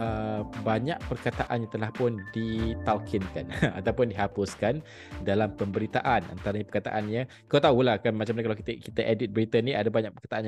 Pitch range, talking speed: 105-120 Hz, 155 wpm